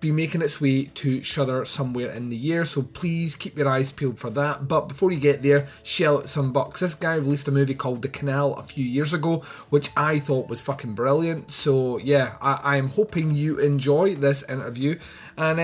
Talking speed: 205 wpm